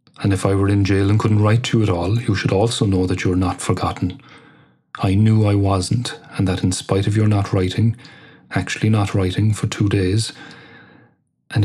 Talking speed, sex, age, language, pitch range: 205 wpm, male, 30-49, English, 95-110 Hz